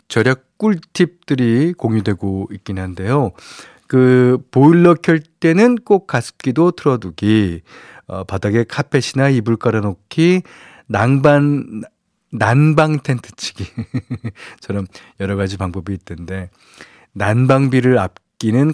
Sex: male